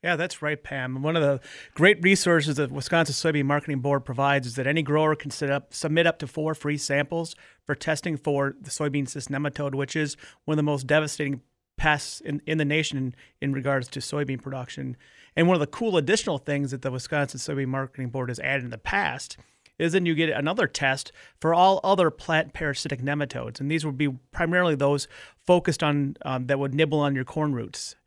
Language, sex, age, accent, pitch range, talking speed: English, male, 30-49, American, 140-160 Hz, 210 wpm